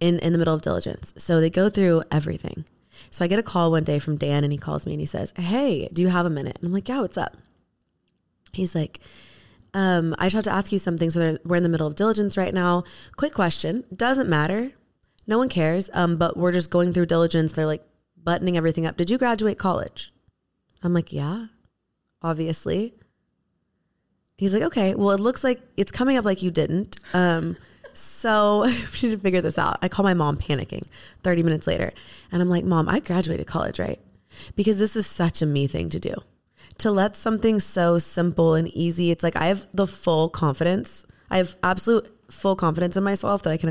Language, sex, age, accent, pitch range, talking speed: English, female, 20-39, American, 165-200 Hz, 215 wpm